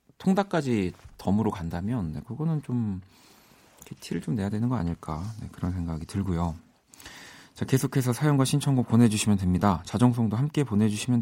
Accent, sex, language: native, male, Korean